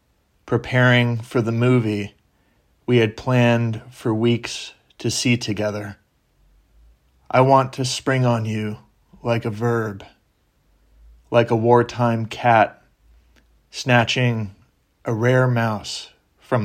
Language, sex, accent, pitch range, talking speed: English, male, American, 105-125 Hz, 110 wpm